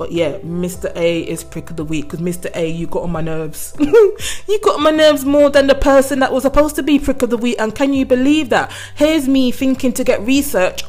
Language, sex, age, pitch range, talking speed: English, female, 20-39, 165-205 Hz, 255 wpm